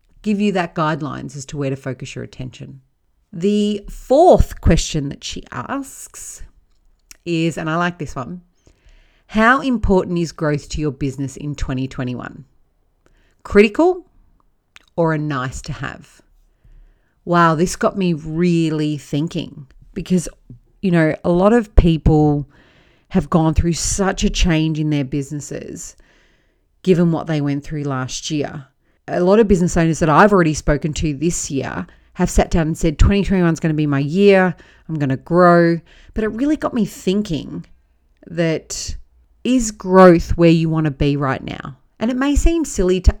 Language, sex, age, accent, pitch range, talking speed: English, female, 40-59, Australian, 145-185 Hz, 160 wpm